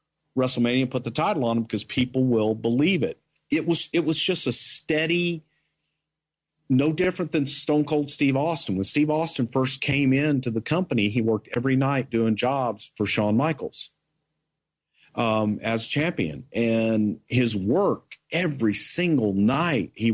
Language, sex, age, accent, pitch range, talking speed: English, male, 50-69, American, 115-150 Hz, 155 wpm